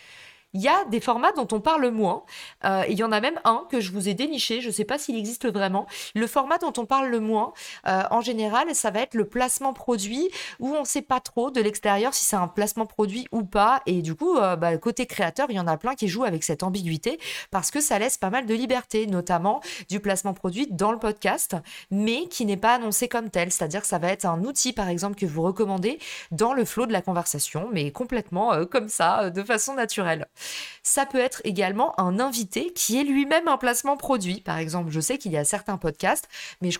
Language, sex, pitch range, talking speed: French, female, 180-240 Hz, 240 wpm